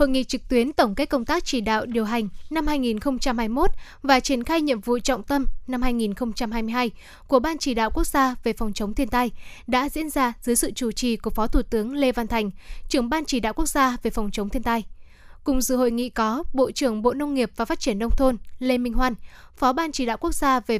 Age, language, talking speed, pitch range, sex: 10-29, Vietnamese, 240 wpm, 230-275 Hz, female